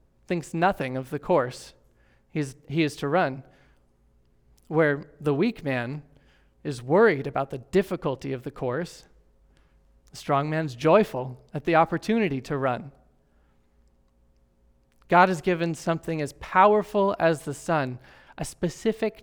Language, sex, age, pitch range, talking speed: English, male, 30-49, 120-180 Hz, 130 wpm